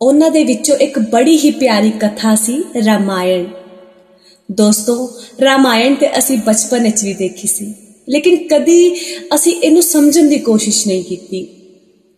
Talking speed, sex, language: 140 wpm, female, Punjabi